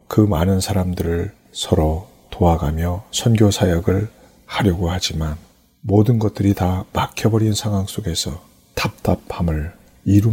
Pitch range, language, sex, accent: 85-105 Hz, Korean, male, native